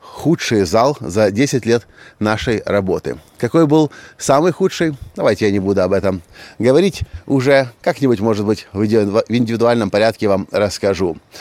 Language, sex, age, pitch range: Russian, male, 30-49, 100-145 Hz